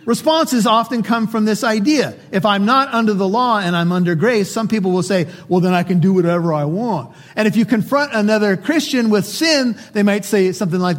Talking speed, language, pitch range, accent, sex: 225 wpm, English, 150-220 Hz, American, male